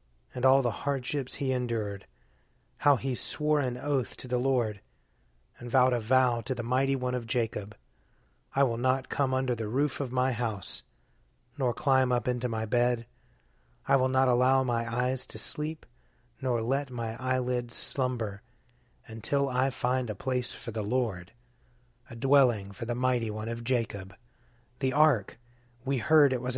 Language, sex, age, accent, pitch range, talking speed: English, male, 30-49, American, 120-135 Hz, 170 wpm